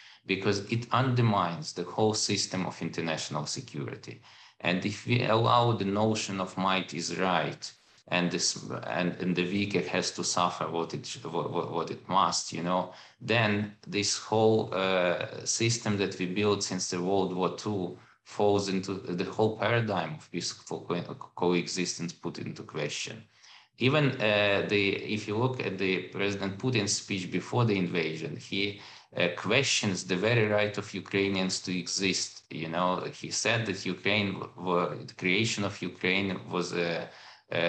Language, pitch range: English, 90-105 Hz